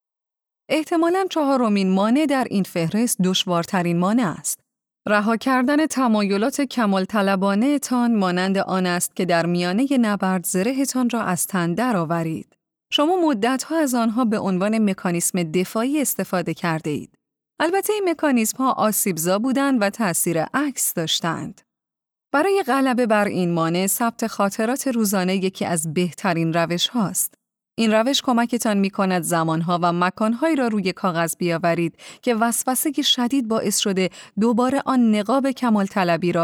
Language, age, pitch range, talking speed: Persian, 30-49, 180-255 Hz, 140 wpm